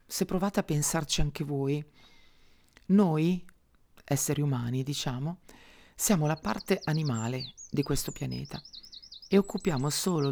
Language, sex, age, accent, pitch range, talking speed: Italian, female, 40-59, native, 140-180 Hz, 115 wpm